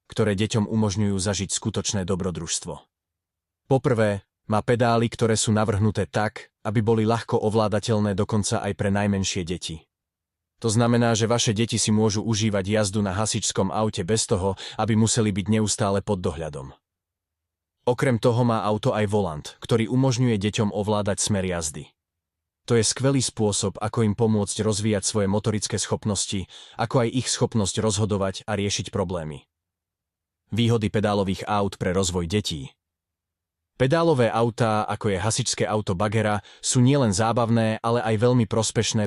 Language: Slovak